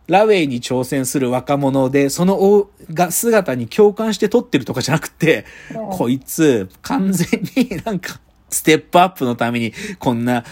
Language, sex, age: Japanese, male, 40-59